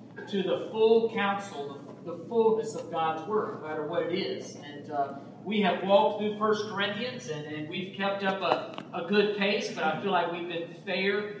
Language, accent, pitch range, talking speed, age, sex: English, American, 160-205 Hz, 200 wpm, 40-59, male